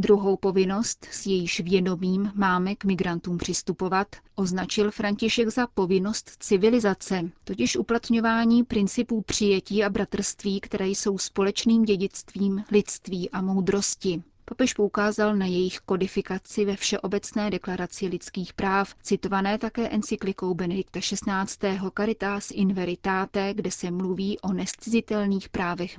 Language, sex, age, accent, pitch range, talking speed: Czech, female, 30-49, native, 190-210 Hz, 120 wpm